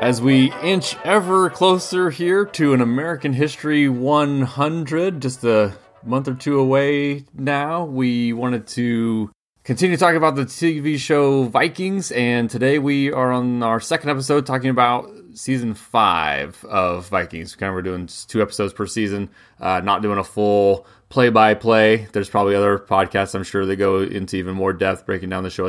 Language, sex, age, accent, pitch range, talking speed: English, male, 30-49, American, 100-135 Hz, 165 wpm